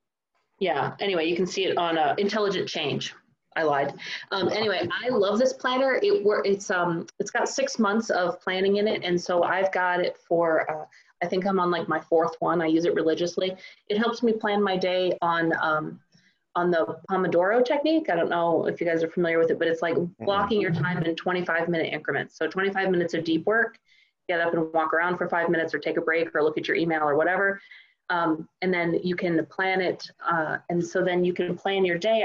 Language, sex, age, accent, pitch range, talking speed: English, female, 30-49, American, 160-190 Hz, 230 wpm